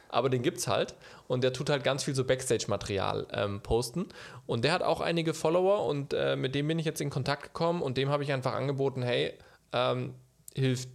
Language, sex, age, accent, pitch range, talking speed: German, male, 20-39, German, 120-150 Hz, 220 wpm